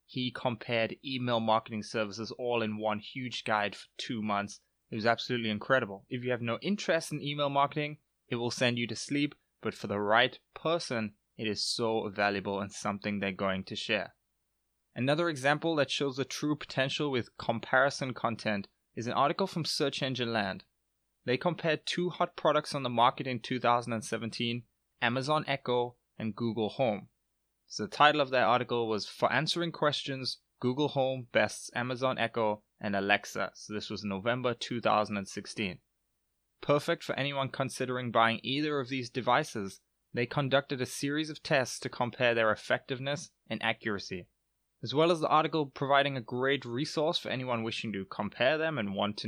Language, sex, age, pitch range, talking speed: English, male, 20-39, 110-140 Hz, 170 wpm